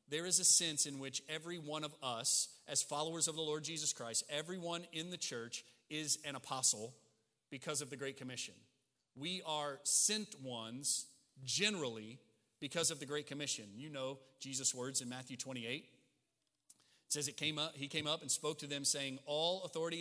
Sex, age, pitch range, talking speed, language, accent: male, 40-59, 130-165 Hz, 175 wpm, English, American